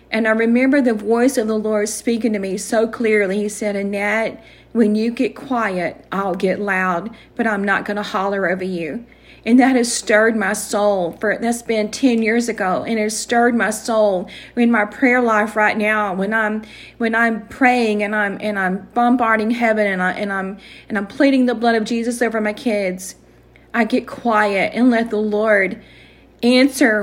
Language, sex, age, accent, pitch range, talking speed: English, female, 40-59, American, 205-240 Hz, 195 wpm